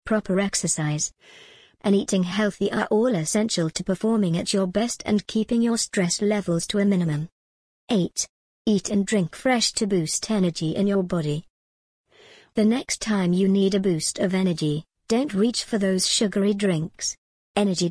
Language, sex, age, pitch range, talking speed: English, male, 50-69, 185-220 Hz, 160 wpm